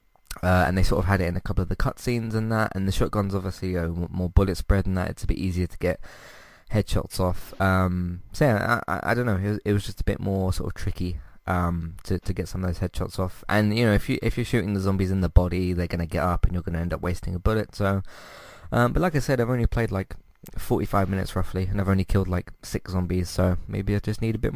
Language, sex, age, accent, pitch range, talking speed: English, male, 20-39, British, 90-105 Hz, 275 wpm